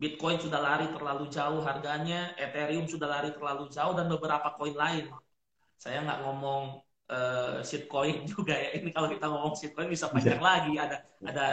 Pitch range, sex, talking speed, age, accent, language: 150-195 Hz, male, 165 wpm, 20-39, native, Indonesian